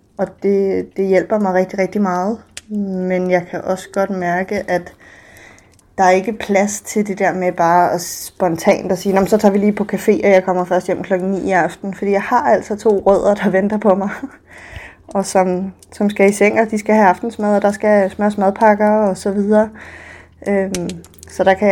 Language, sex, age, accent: Danish, female, 20-39, native